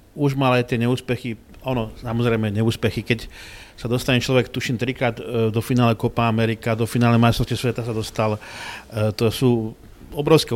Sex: male